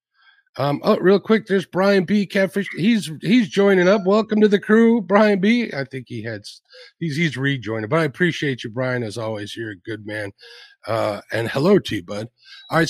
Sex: male